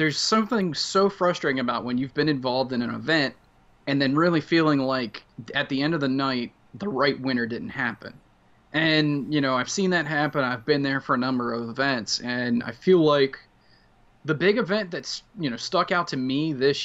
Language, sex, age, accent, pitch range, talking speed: English, male, 20-39, American, 120-155 Hz, 205 wpm